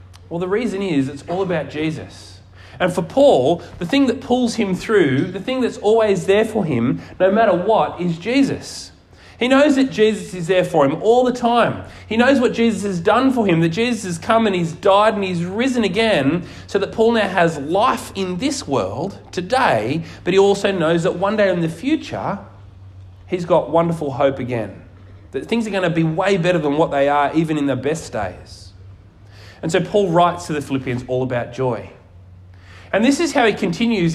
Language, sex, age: English, male, 30-49